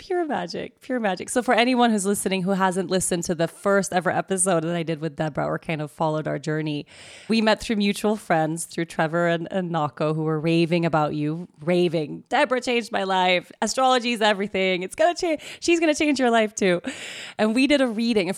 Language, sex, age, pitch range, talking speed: English, female, 20-39, 170-225 Hz, 220 wpm